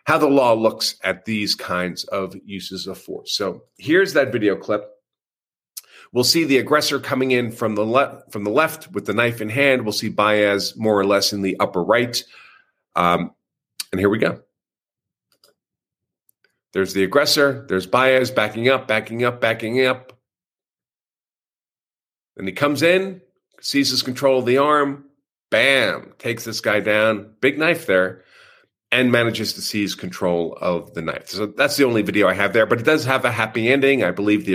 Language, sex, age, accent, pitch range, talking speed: English, male, 50-69, American, 95-135 Hz, 175 wpm